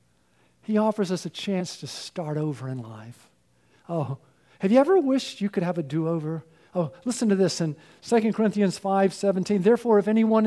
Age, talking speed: 50-69, 185 wpm